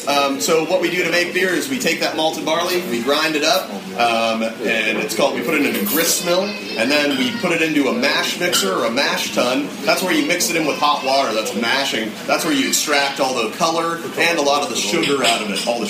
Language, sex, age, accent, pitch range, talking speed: English, male, 30-49, American, 120-165 Hz, 270 wpm